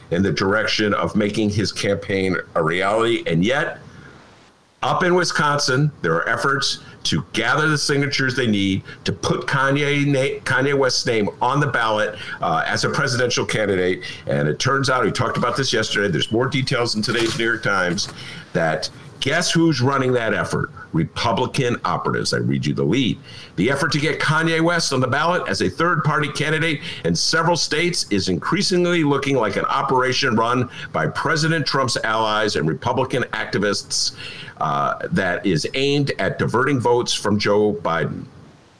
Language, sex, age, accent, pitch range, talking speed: English, male, 50-69, American, 105-145 Hz, 170 wpm